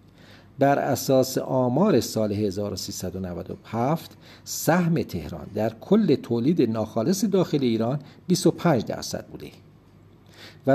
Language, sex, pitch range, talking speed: Persian, male, 105-140 Hz, 95 wpm